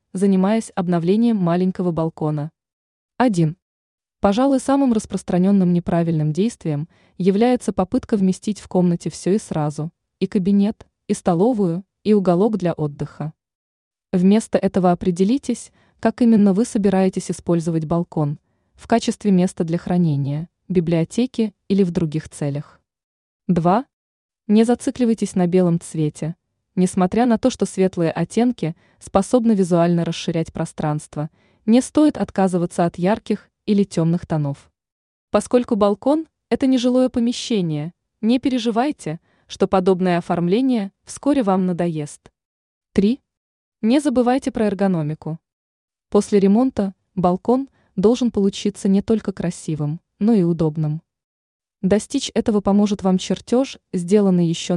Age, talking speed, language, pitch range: 20-39, 115 wpm, Russian, 170-220 Hz